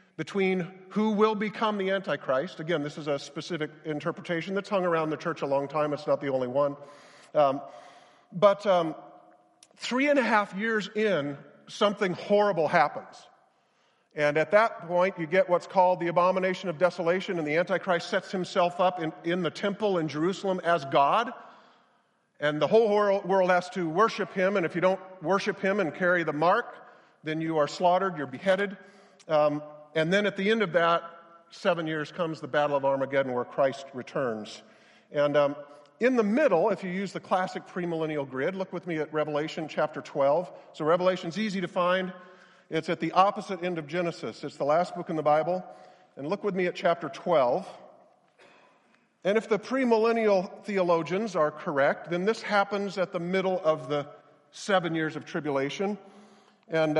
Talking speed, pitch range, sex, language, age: 180 wpm, 155-195 Hz, male, English, 50-69